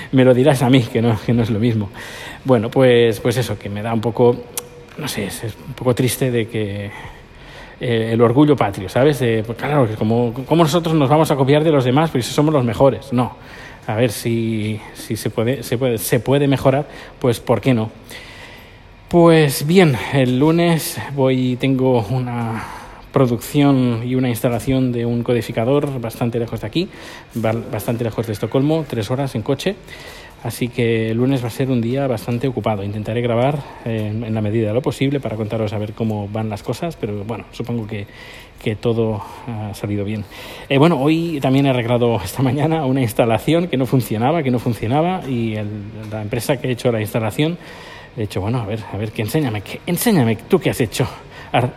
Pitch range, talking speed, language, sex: 115-135 Hz, 200 wpm, Spanish, male